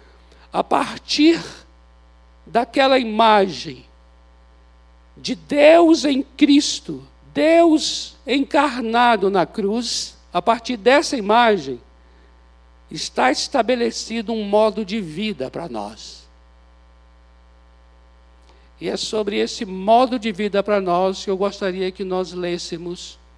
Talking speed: 100 wpm